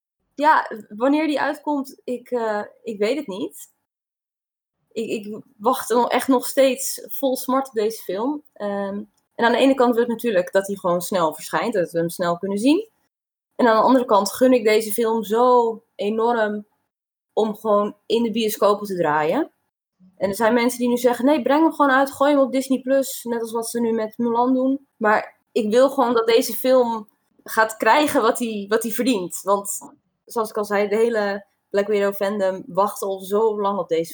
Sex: female